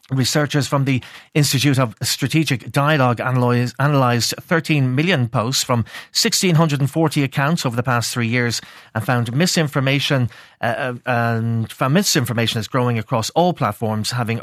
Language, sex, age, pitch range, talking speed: English, male, 30-49, 115-140 Hz, 135 wpm